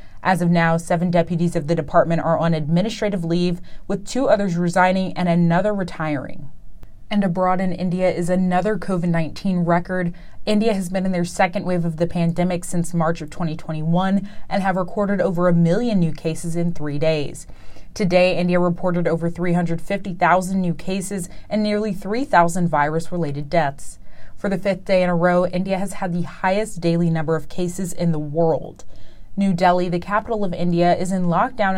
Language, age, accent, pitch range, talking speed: English, 20-39, American, 170-190 Hz, 175 wpm